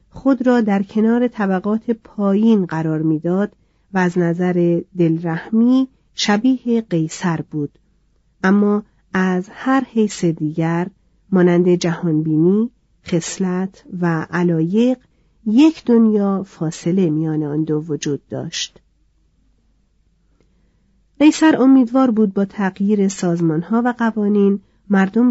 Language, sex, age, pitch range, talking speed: Persian, female, 40-59, 170-220 Hz, 100 wpm